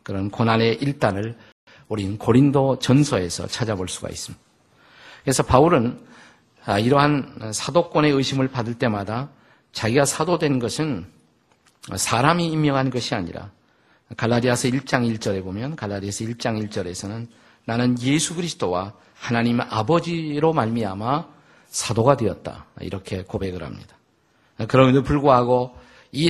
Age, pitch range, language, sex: 50-69, 105-135 Hz, Korean, male